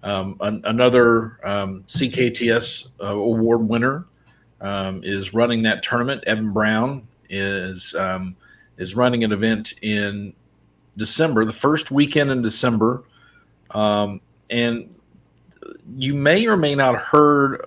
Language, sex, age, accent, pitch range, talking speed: English, male, 40-59, American, 100-125 Hz, 120 wpm